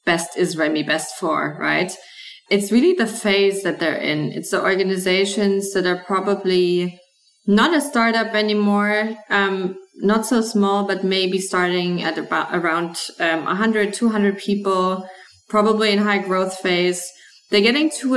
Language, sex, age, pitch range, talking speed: English, female, 20-39, 180-205 Hz, 150 wpm